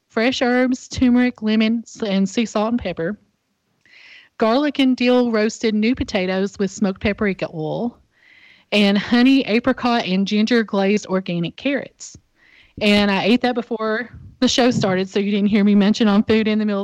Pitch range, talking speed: 185-220 Hz, 165 wpm